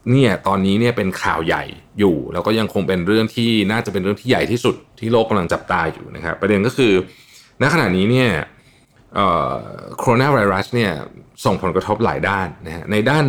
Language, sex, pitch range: Thai, male, 95-130 Hz